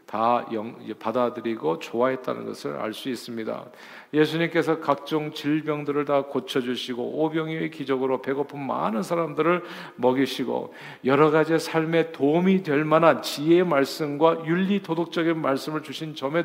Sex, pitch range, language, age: male, 135-165 Hz, Korean, 50-69